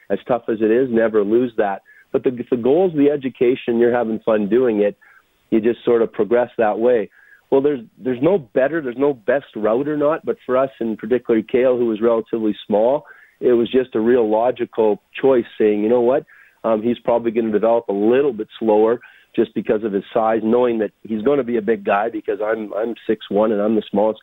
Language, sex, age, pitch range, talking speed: English, male, 40-59, 110-125 Hz, 230 wpm